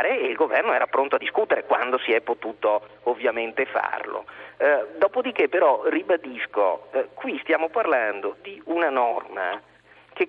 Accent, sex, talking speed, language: native, male, 145 wpm, Italian